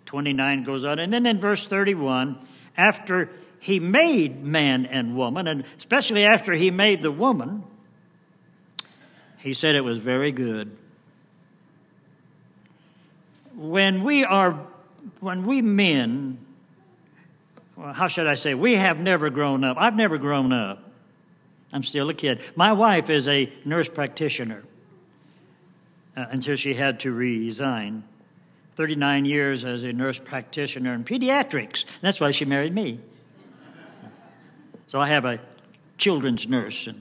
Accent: American